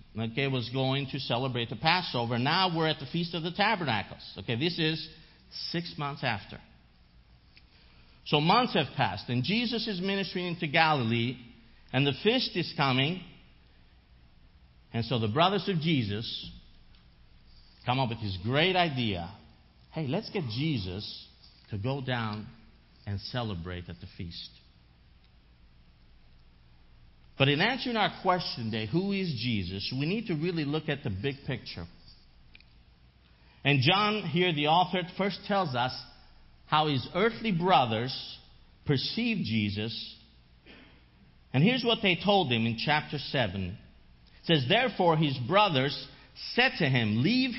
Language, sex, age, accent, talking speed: English, male, 50-69, American, 140 wpm